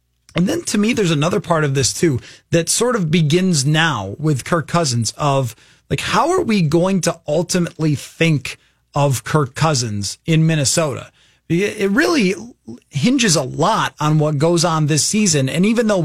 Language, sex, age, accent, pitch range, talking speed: English, male, 30-49, American, 150-200 Hz, 170 wpm